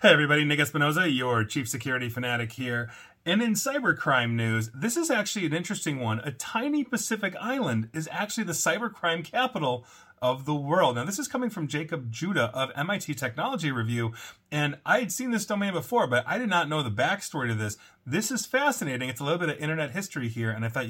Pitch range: 120-175 Hz